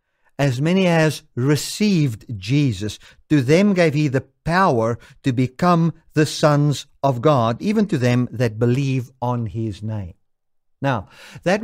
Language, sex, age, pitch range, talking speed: English, male, 50-69, 125-170 Hz, 140 wpm